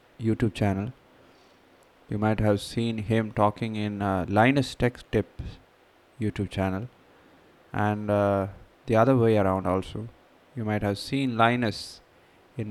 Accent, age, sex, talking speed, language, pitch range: Indian, 20-39, male, 130 wpm, English, 105-120 Hz